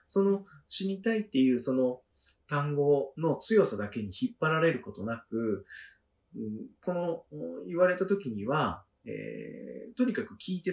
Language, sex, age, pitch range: Japanese, male, 40-59, 125-215 Hz